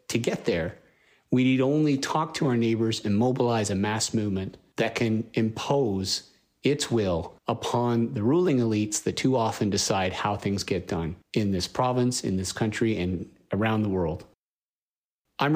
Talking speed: 165 wpm